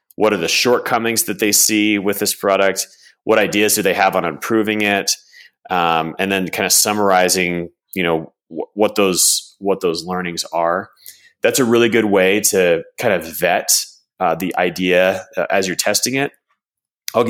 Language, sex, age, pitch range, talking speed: English, male, 30-49, 90-115 Hz, 170 wpm